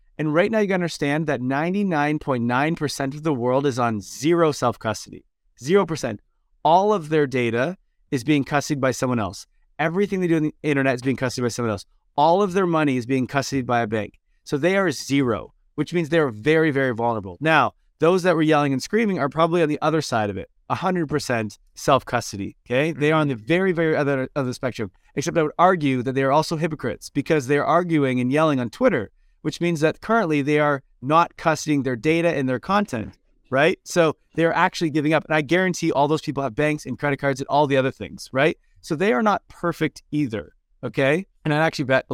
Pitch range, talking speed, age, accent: 130-160 Hz, 210 wpm, 30-49, American